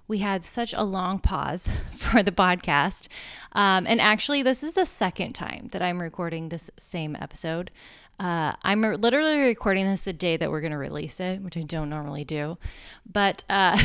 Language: English